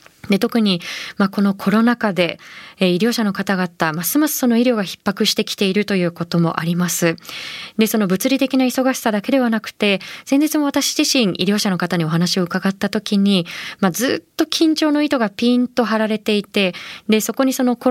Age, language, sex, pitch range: 20-39, Japanese, female, 185-250 Hz